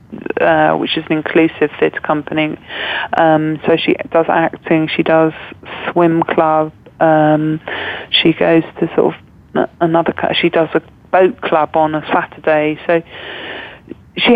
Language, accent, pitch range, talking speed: English, British, 150-180 Hz, 140 wpm